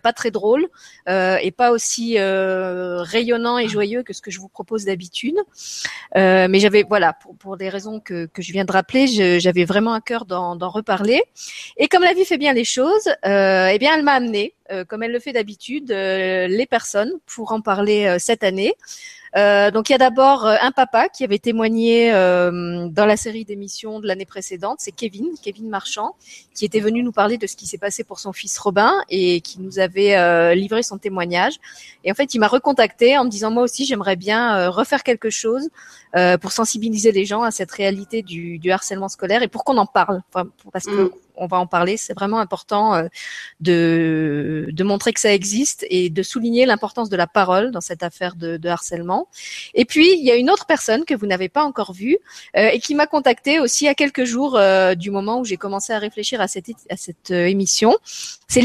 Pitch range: 190-245 Hz